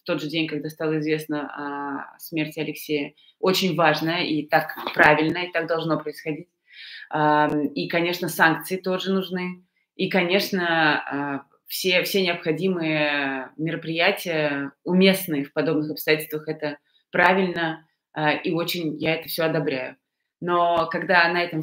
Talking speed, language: 130 wpm, Russian